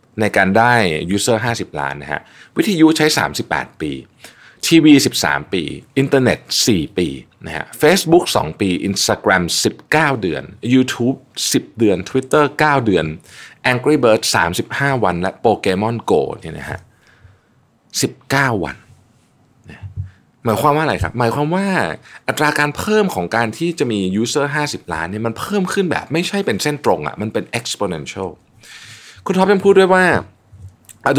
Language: Thai